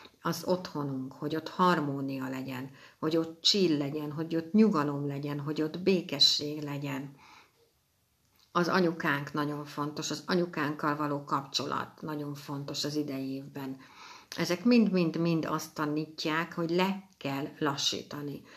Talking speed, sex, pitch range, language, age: 125 wpm, female, 145-180 Hz, Hungarian, 60-79